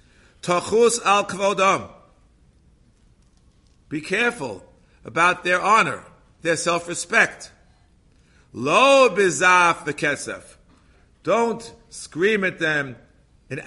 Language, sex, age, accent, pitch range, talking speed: English, male, 50-69, American, 160-200 Hz, 90 wpm